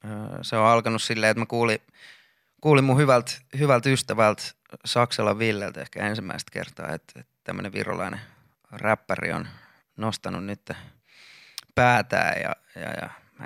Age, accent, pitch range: 20-39, native, 100-120 Hz